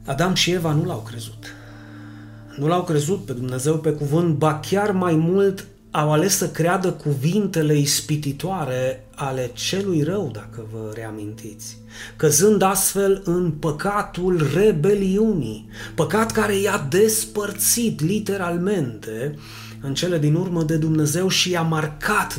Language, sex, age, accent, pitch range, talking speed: Romanian, male, 30-49, native, 125-175 Hz, 130 wpm